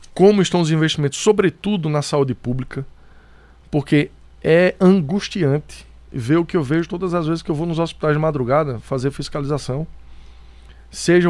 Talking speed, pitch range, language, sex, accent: 155 wpm, 125-170 Hz, Portuguese, male, Brazilian